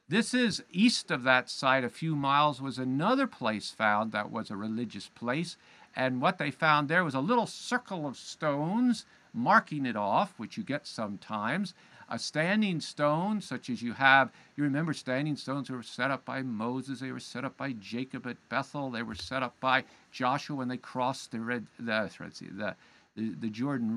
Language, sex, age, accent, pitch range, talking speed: English, male, 50-69, American, 130-175 Hz, 195 wpm